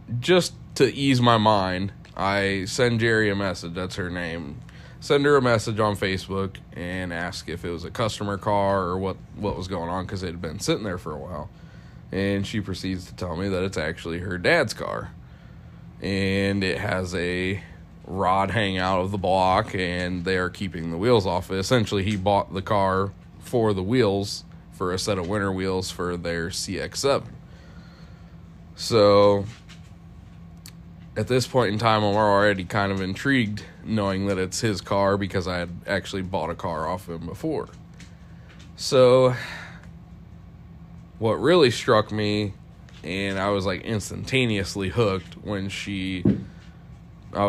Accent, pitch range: American, 90-105 Hz